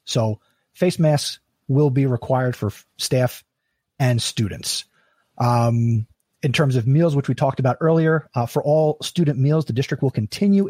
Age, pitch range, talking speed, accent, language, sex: 30-49, 125-155 Hz, 165 wpm, American, English, male